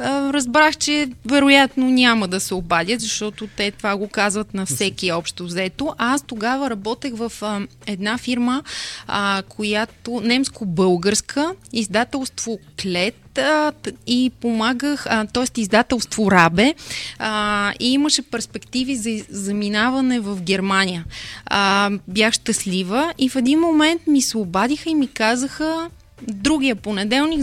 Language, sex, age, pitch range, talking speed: Bulgarian, female, 20-39, 205-260 Hz, 120 wpm